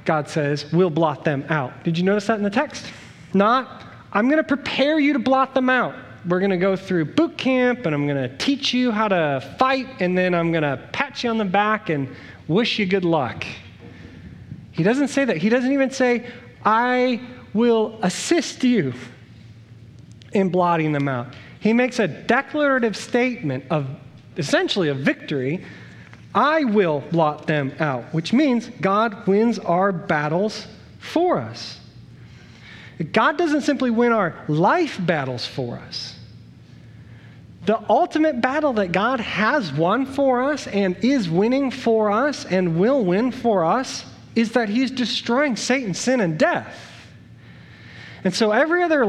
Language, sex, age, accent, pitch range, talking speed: English, male, 30-49, American, 160-250 Hz, 160 wpm